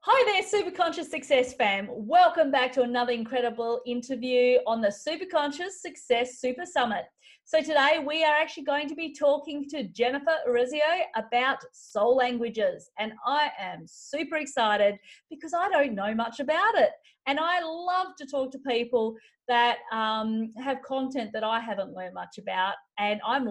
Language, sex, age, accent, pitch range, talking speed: English, female, 30-49, Australian, 220-285 Hz, 165 wpm